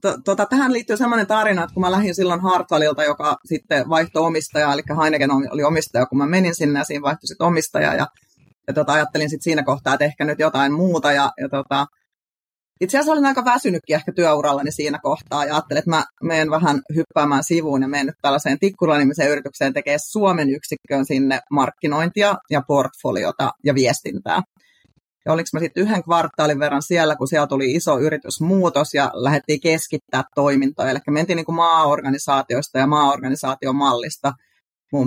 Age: 30-49